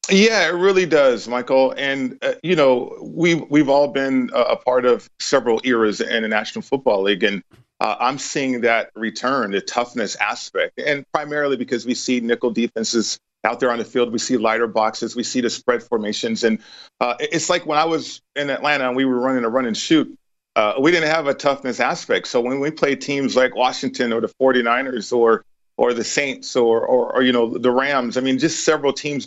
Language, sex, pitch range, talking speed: English, male, 120-150 Hz, 210 wpm